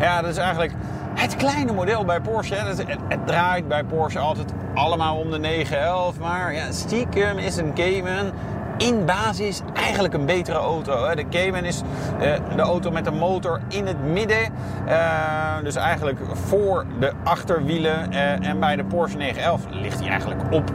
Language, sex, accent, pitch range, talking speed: Dutch, male, Dutch, 130-175 Hz, 160 wpm